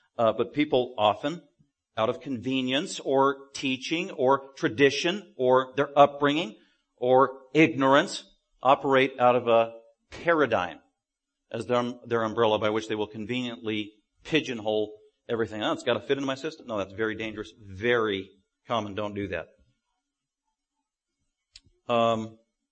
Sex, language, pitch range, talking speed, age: male, English, 105-135 Hz, 130 wpm, 50-69